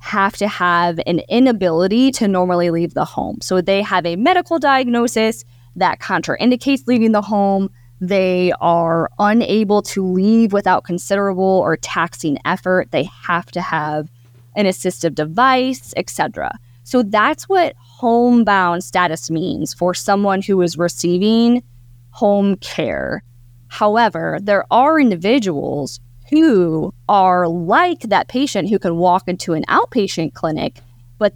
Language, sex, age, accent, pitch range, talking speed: English, female, 20-39, American, 165-210 Hz, 135 wpm